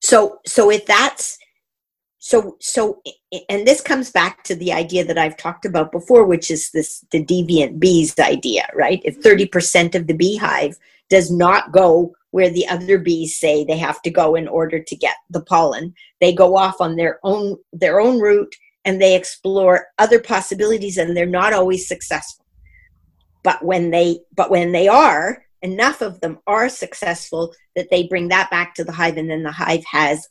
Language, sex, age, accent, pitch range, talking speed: English, female, 50-69, American, 165-200 Hz, 180 wpm